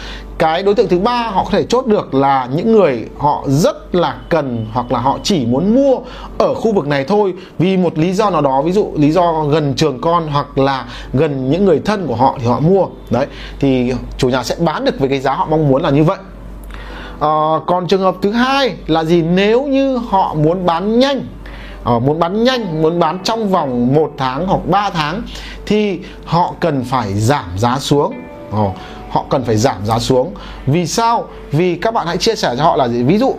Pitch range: 135-200 Hz